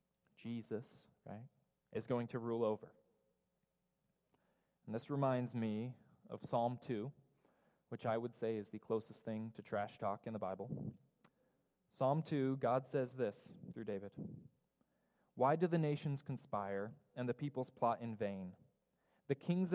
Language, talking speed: English, 145 wpm